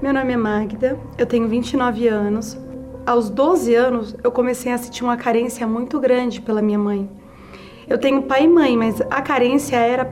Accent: Brazilian